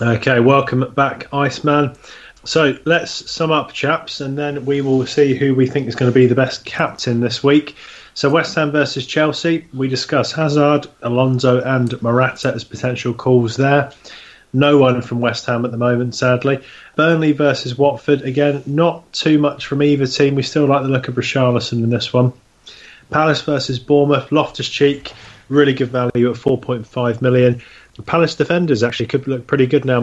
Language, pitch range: English, 120-140 Hz